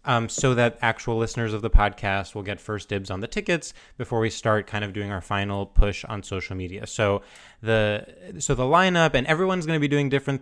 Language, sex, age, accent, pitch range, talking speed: English, male, 20-39, American, 110-145 Hz, 220 wpm